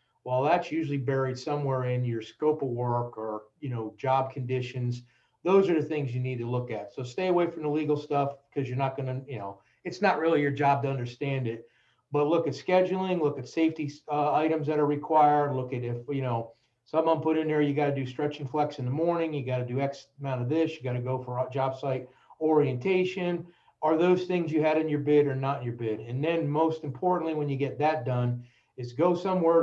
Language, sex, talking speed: English, male, 240 wpm